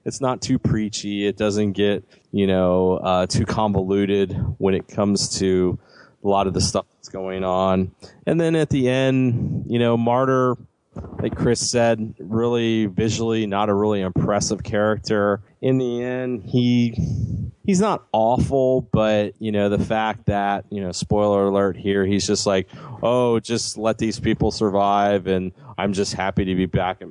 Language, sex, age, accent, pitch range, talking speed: English, male, 30-49, American, 95-115 Hz, 170 wpm